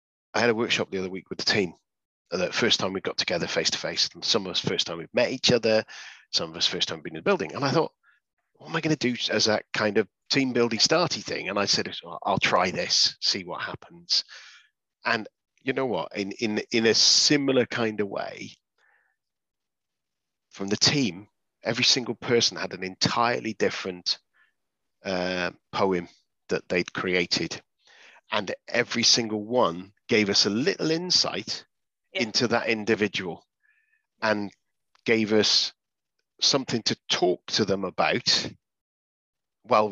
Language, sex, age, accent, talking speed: English, male, 40-59, British, 165 wpm